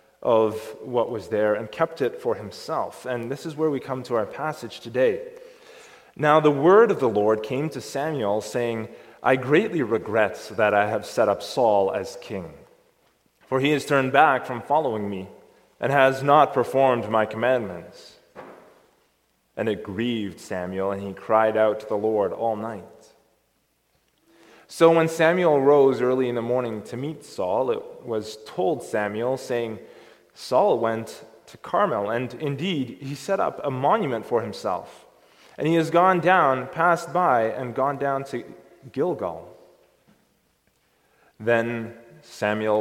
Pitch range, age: 110-155 Hz, 20-39